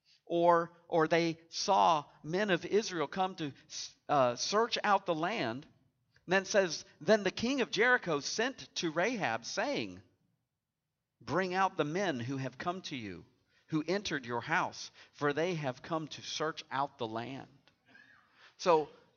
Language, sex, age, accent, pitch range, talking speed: English, male, 50-69, American, 140-175 Hz, 155 wpm